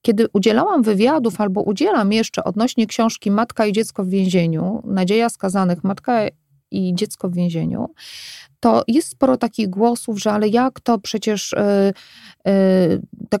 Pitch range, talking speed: 190-230 Hz, 140 wpm